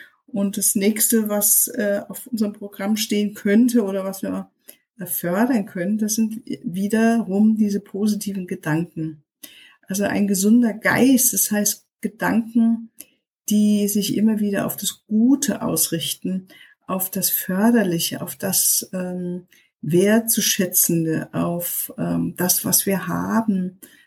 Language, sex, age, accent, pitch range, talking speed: German, female, 50-69, German, 190-230 Hz, 125 wpm